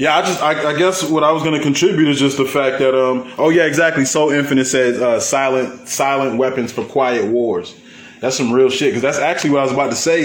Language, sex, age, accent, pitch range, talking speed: English, male, 20-39, American, 125-165 Hz, 250 wpm